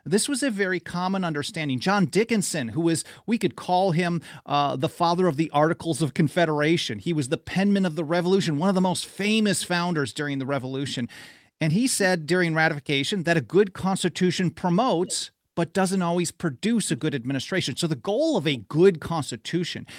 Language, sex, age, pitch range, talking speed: English, male, 40-59, 145-185 Hz, 185 wpm